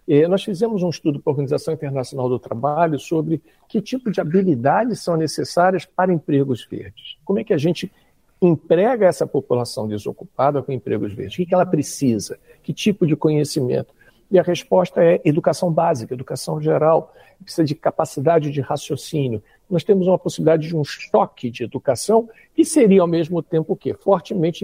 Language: Portuguese